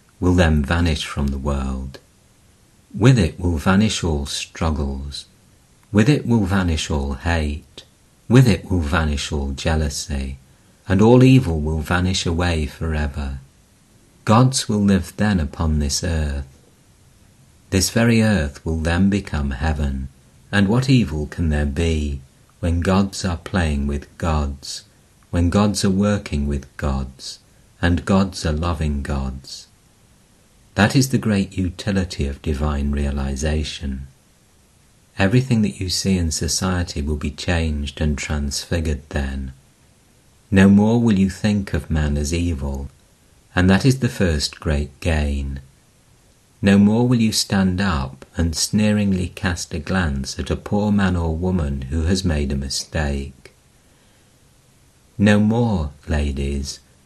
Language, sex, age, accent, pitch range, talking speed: English, male, 50-69, British, 70-100 Hz, 135 wpm